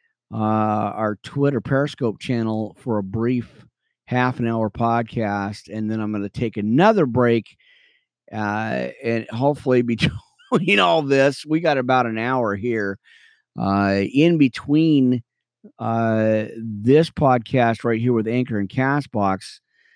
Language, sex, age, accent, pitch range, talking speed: English, male, 50-69, American, 105-135 Hz, 135 wpm